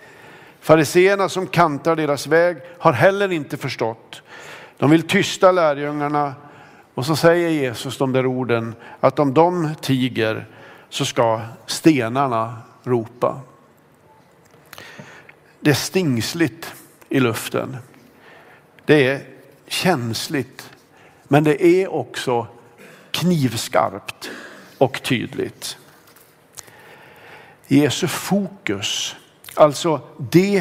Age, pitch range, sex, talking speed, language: 50-69, 130-180 Hz, male, 90 wpm, Swedish